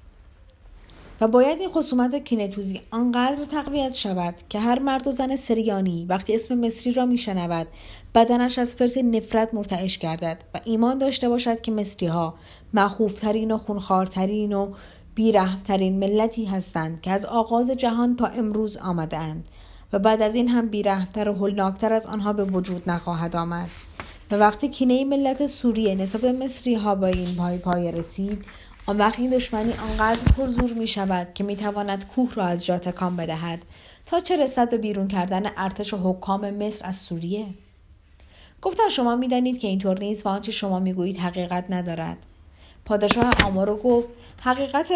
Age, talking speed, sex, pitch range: 30-49, 155 wpm, female, 185-240 Hz